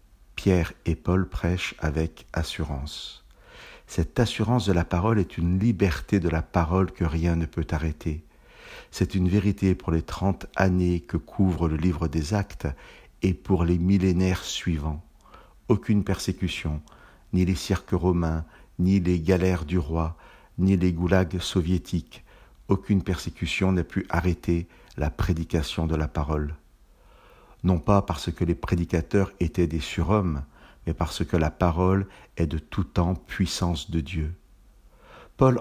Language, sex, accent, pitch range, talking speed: French, male, French, 80-95 Hz, 145 wpm